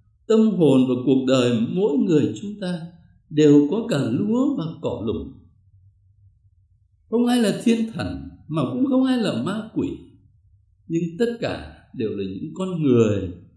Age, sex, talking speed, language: 60-79, male, 160 wpm, Vietnamese